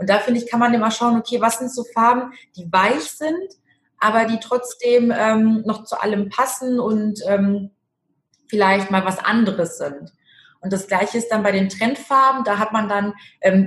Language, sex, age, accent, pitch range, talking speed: German, female, 20-39, German, 195-245 Hz, 195 wpm